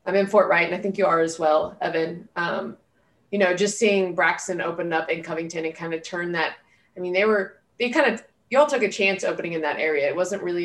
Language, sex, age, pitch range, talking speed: English, female, 20-39, 165-190 Hz, 255 wpm